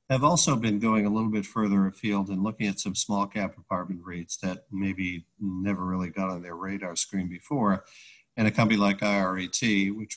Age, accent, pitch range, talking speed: 50-69, American, 95-105 Hz, 195 wpm